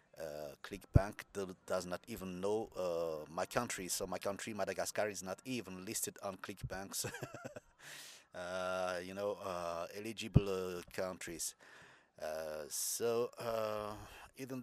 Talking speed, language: 125 wpm, English